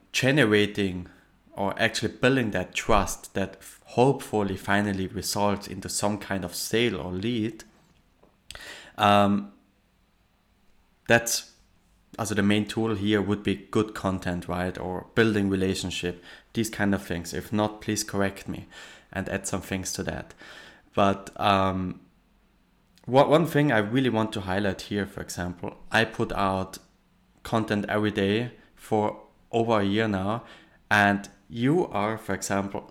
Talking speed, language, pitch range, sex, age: 140 wpm, English, 95-115 Hz, male, 20-39